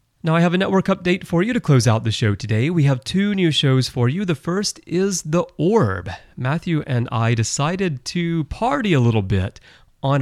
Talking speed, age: 210 wpm, 30-49